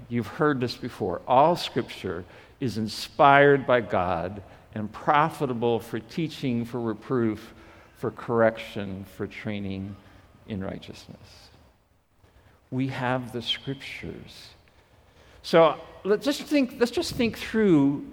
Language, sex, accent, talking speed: English, male, American, 115 wpm